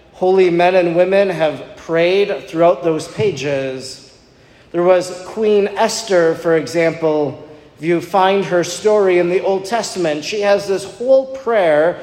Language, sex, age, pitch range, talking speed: English, male, 40-59, 155-195 Hz, 145 wpm